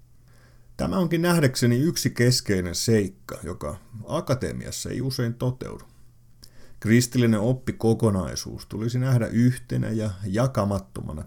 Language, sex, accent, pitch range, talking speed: Finnish, male, native, 105-120 Hz, 95 wpm